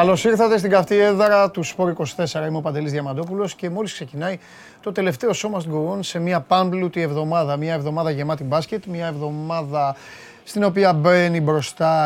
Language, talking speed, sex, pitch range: Greek, 165 wpm, male, 140-185 Hz